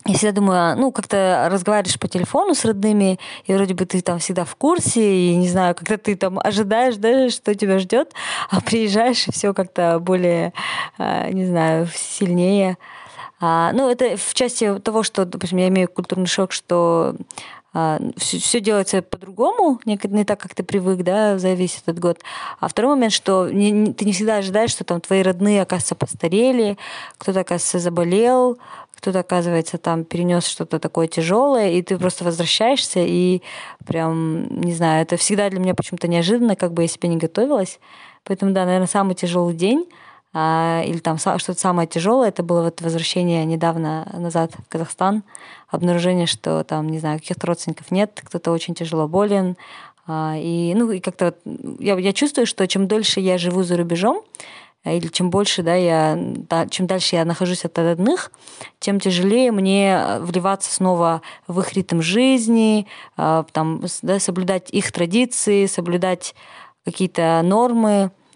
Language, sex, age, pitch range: Russian, female, 20-39, 170-210 Hz